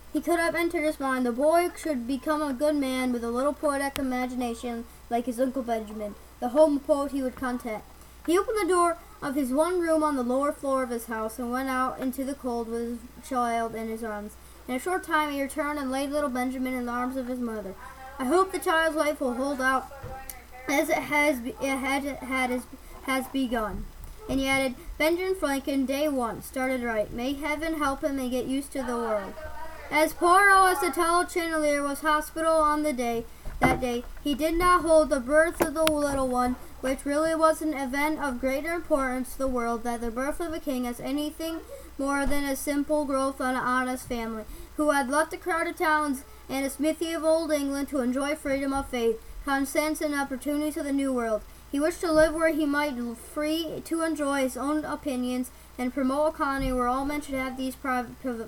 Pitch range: 255-305 Hz